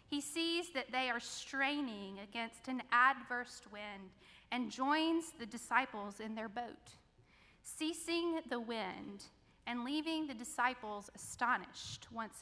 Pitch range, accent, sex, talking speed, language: 215-260 Hz, American, female, 125 wpm, English